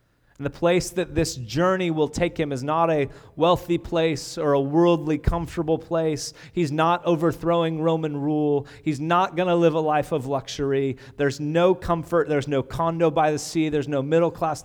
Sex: male